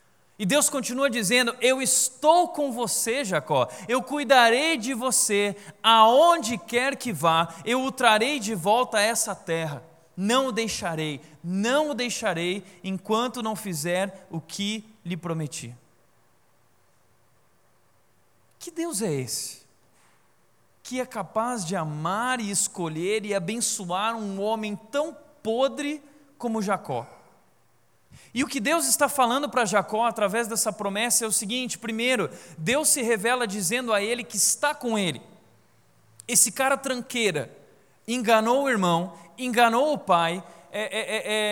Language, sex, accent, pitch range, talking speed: Portuguese, male, Brazilian, 195-260 Hz, 130 wpm